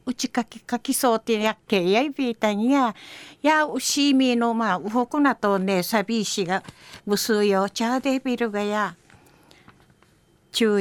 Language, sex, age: Japanese, female, 60-79